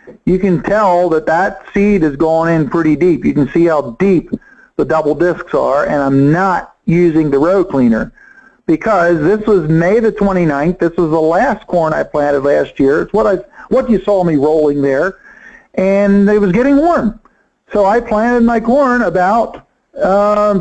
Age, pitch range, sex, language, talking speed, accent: 50-69, 155-205 Hz, male, English, 185 wpm, American